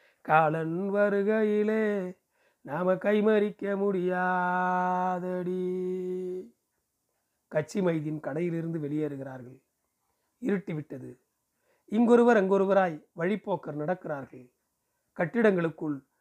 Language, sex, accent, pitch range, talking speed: Tamil, male, native, 160-200 Hz, 60 wpm